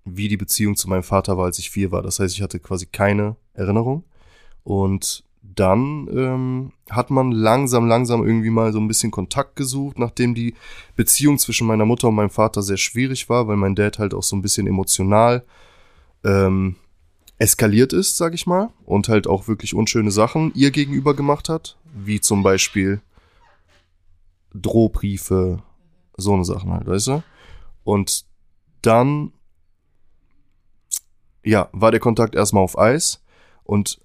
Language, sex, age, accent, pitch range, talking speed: German, male, 20-39, German, 95-120 Hz, 155 wpm